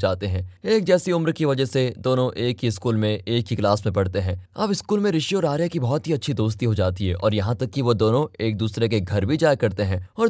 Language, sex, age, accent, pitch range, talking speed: Hindi, male, 20-39, native, 110-160 Hz, 280 wpm